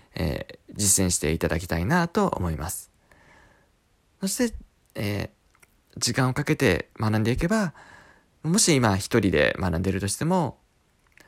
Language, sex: Japanese, male